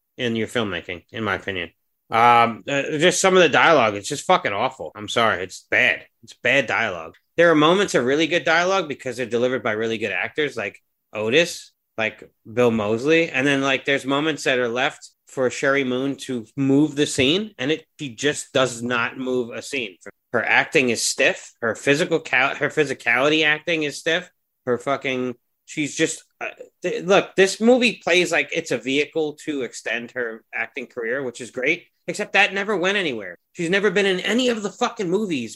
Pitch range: 130-190 Hz